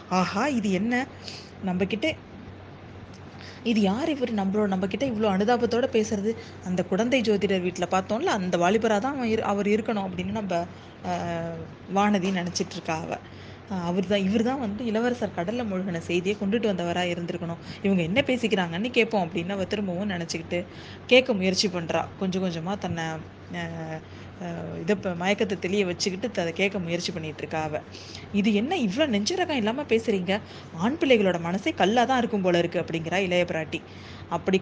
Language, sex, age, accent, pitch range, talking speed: Tamil, female, 20-39, native, 175-220 Hz, 140 wpm